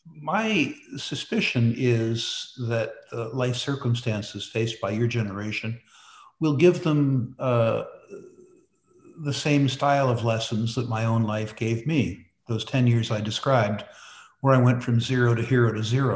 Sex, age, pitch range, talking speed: male, 60-79, 110-135 Hz, 150 wpm